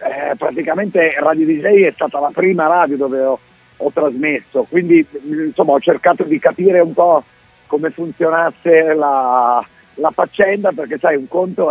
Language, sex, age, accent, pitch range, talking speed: Italian, male, 50-69, native, 150-190 Hz, 155 wpm